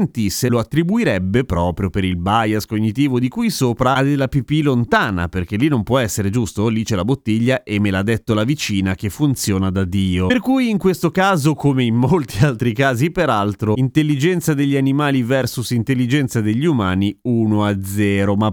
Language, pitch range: Italian, 105-145 Hz